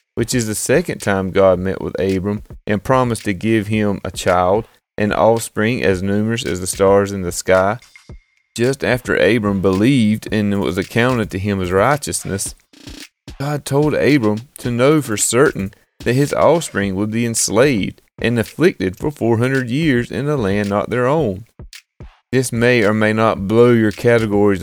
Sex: male